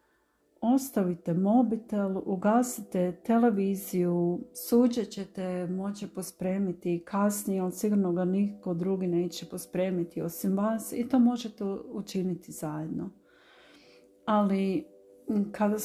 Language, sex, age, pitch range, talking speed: Croatian, female, 40-59, 180-215 Hz, 95 wpm